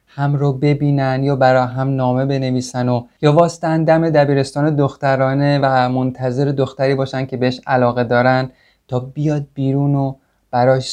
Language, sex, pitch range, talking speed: Persian, male, 130-165 Hz, 145 wpm